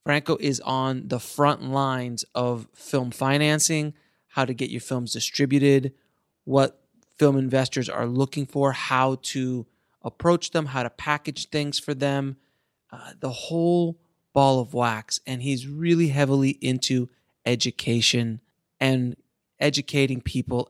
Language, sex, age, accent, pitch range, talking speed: English, male, 30-49, American, 120-140 Hz, 135 wpm